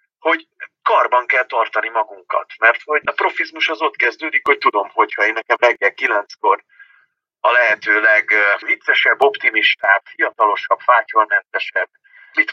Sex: male